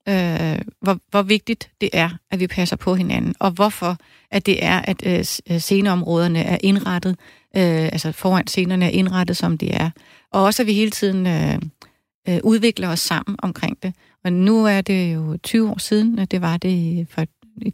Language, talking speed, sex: Danish, 195 wpm, female